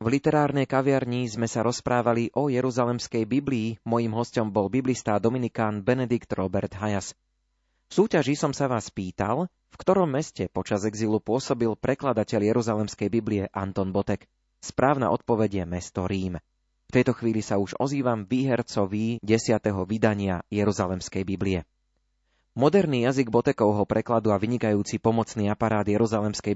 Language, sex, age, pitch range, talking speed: Slovak, male, 30-49, 105-125 Hz, 130 wpm